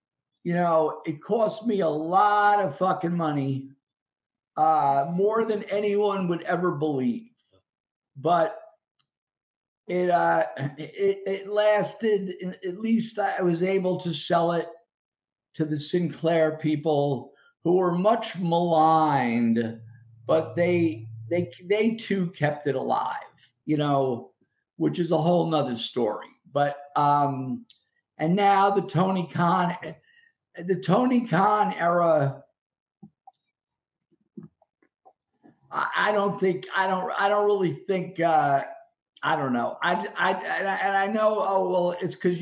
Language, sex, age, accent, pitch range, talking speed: English, male, 50-69, American, 155-200 Hz, 125 wpm